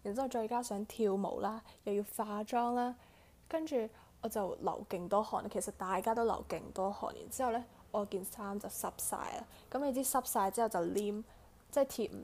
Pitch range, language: 205-250 Hz, Chinese